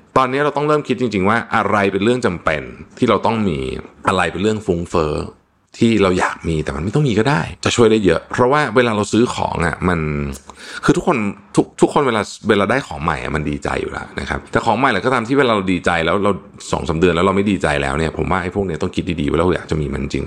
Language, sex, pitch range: Thai, male, 80-105 Hz